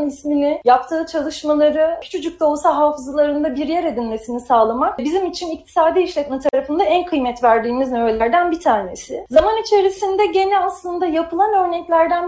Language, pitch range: Turkish, 260-350 Hz